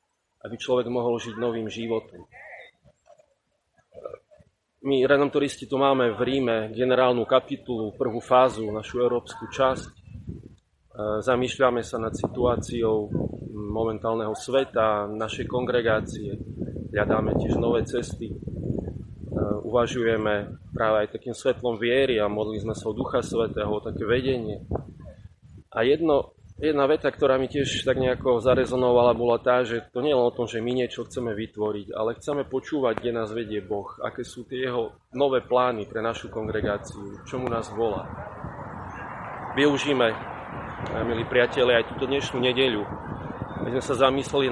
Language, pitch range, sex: Slovak, 110-125 Hz, male